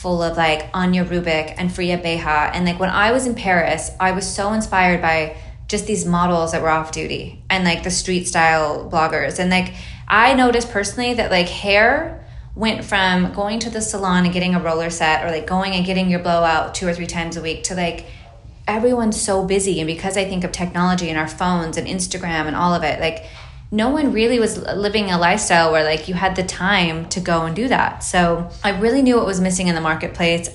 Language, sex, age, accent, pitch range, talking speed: English, female, 20-39, American, 165-190 Hz, 225 wpm